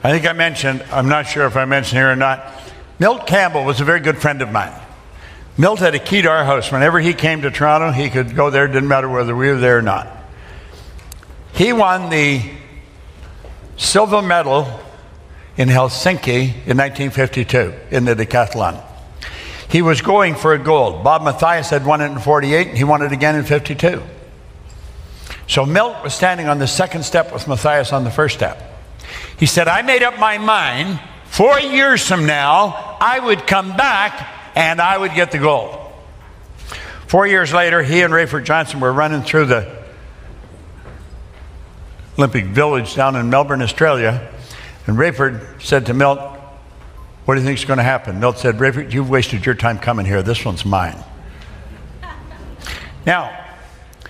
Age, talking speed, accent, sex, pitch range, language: 60-79, 175 wpm, American, male, 110-155 Hz, English